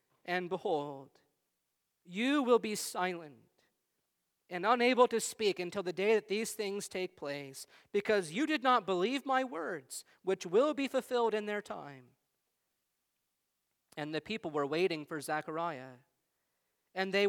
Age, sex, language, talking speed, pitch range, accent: 40-59, male, English, 140 wpm, 150-200 Hz, American